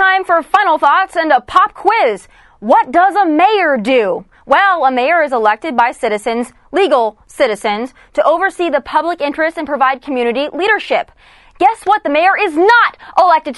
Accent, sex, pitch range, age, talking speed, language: American, female, 280-380 Hz, 20-39, 170 wpm, English